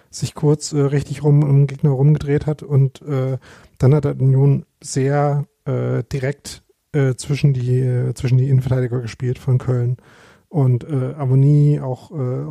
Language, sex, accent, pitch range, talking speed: German, male, German, 130-145 Hz, 165 wpm